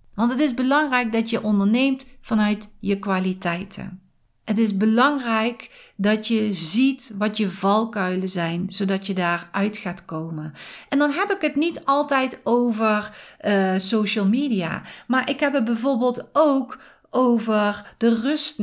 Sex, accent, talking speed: female, Dutch, 145 wpm